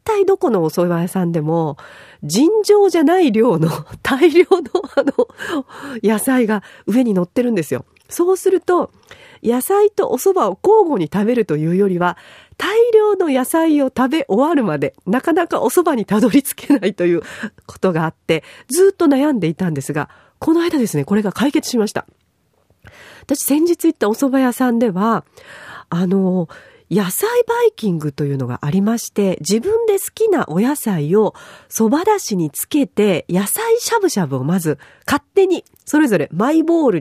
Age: 40-59